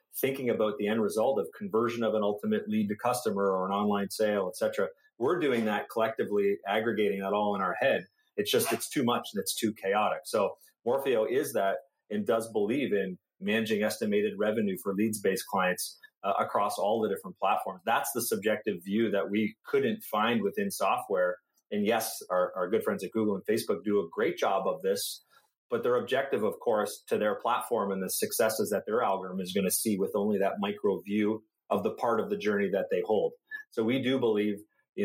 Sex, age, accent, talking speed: male, 30-49, American, 205 wpm